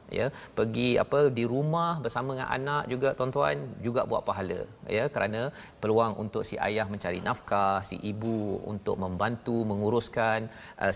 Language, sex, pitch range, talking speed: Malayalam, male, 105-135 Hz, 150 wpm